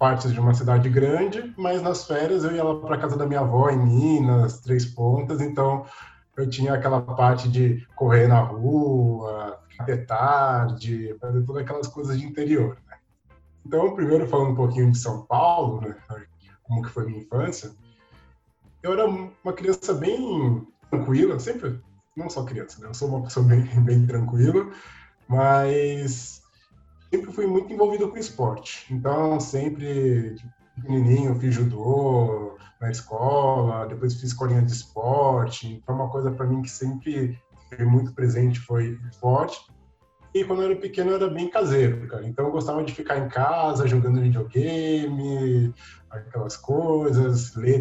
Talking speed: 155 wpm